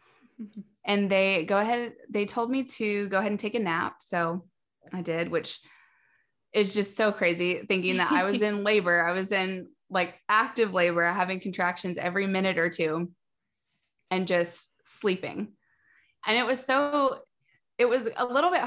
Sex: female